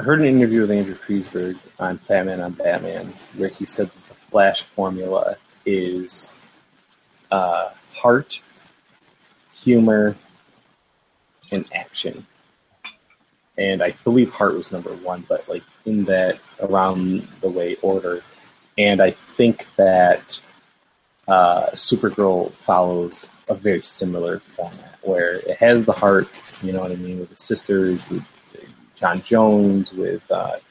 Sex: male